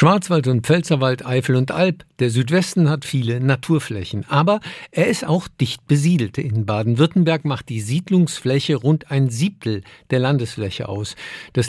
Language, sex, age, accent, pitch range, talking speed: German, male, 50-69, German, 120-155 Hz, 150 wpm